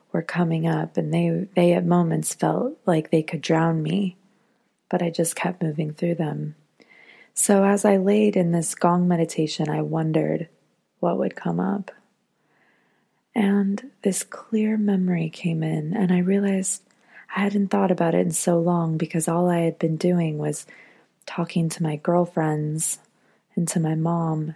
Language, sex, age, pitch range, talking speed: English, female, 20-39, 165-195 Hz, 160 wpm